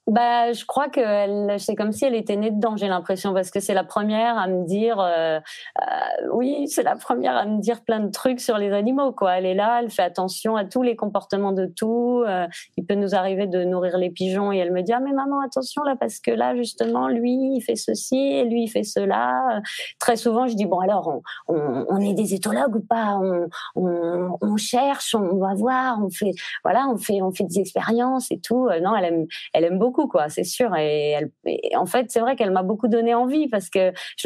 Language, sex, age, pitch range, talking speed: French, female, 30-49, 185-240 Hz, 245 wpm